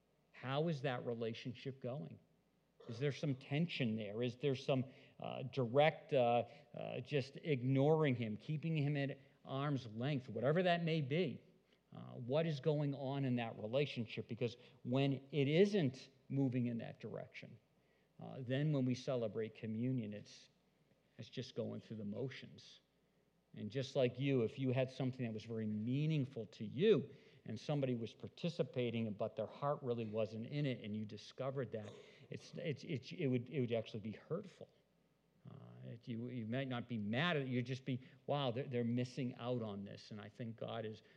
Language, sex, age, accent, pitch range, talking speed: English, male, 50-69, American, 115-145 Hz, 175 wpm